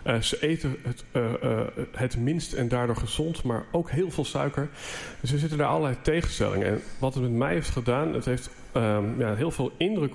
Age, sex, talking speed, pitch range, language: 40-59, male, 215 wpm, 120-150 Hz, Dutch